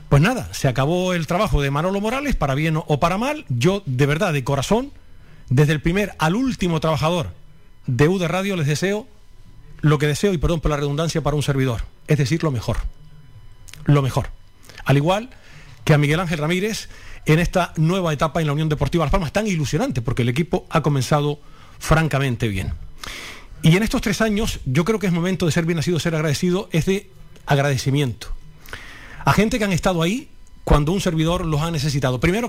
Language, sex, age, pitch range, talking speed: Spanish, male, 40-59, 140-175 Hz, 195 wpm